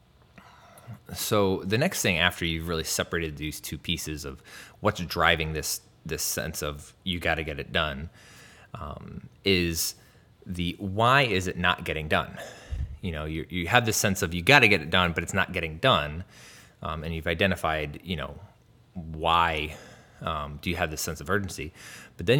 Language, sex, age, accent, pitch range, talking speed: English, male, 20-39, American, 80-95 Hz, 185 wpm